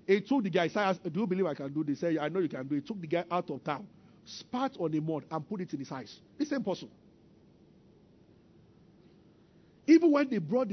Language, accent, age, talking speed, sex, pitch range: English, Nigerian, 50-69, 255 wpm, male, 185-280 Hz